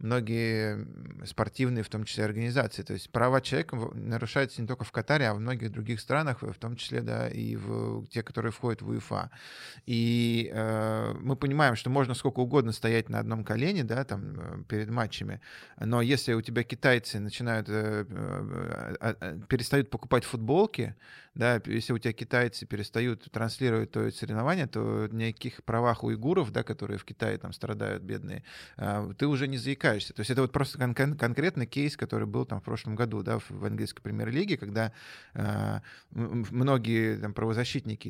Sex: male